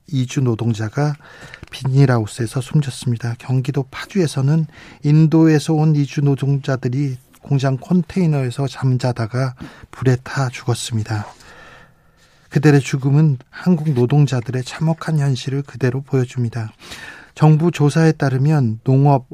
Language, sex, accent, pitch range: Korean, male, native, 125-150 Hz